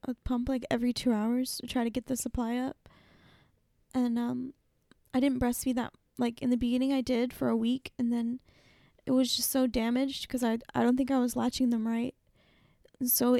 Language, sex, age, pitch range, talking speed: English, female, 10-29, 235-265 Hz, 200 wpm